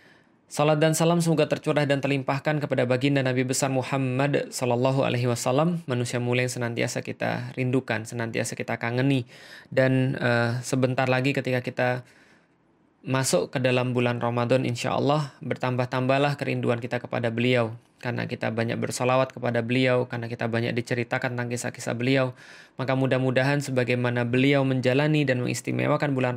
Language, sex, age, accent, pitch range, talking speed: Indonesian, male, 20-39, native, 120-140 Hz, 145 wpm